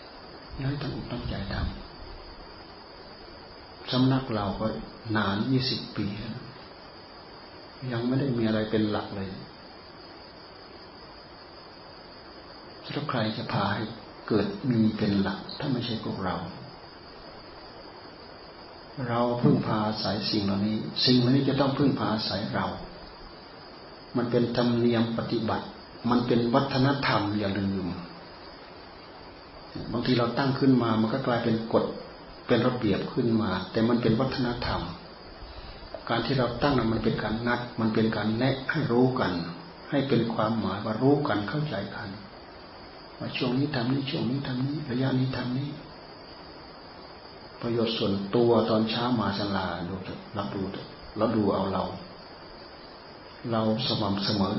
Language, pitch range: Thai, 105-125 Hz